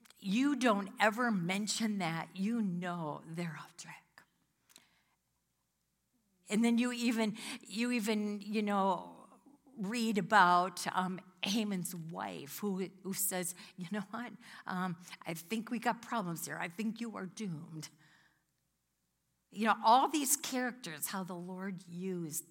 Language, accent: English, American